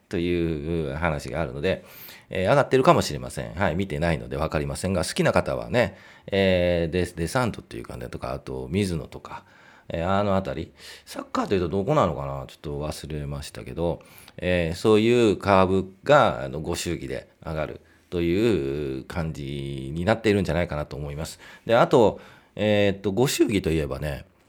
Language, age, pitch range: Japanese, 40-59, 75-100 Hz